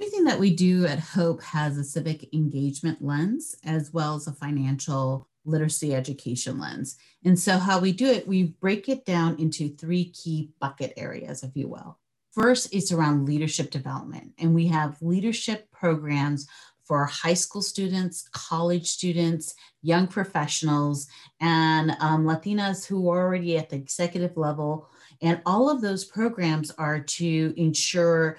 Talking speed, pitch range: 155 wpm, 145-180 Hz